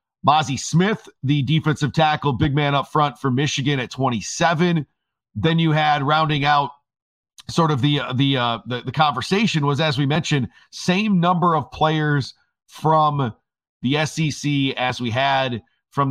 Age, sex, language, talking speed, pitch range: 40-59, male, English, 155 wpm, 135-160 Hz